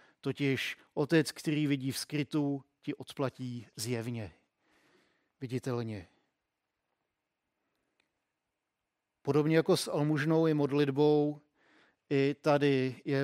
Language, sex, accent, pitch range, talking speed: Czech, male, native, 130-150 Hz, 85 wpm